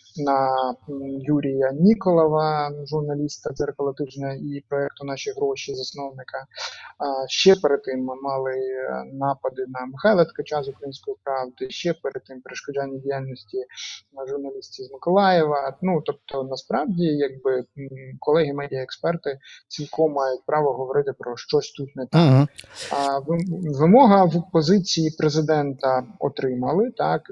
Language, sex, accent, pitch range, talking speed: Ukrainian, male, native, 135-170 Hz, 115 wpm